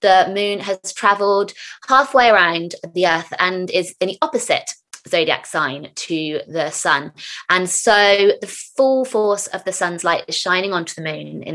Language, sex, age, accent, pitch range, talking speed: English, female, 20-39, British, 170-210 Hz, 170 wpm